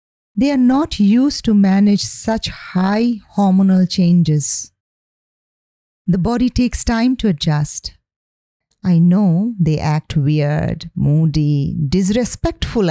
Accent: Indian